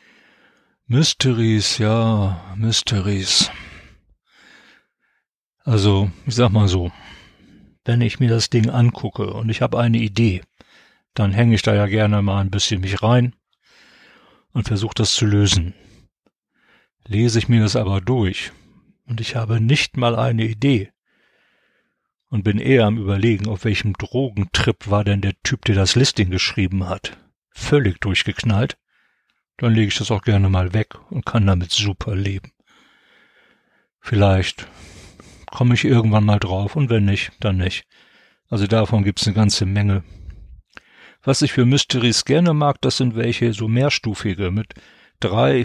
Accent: German